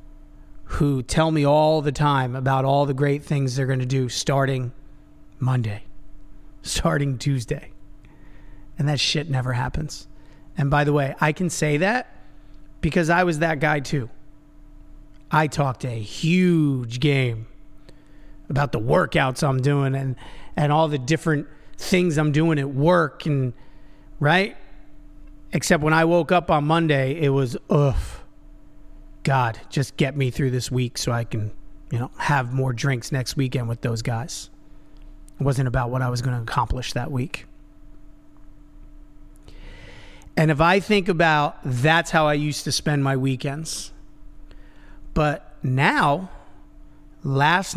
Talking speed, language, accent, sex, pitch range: 145 wpm, English, American, male, 130-150 Hz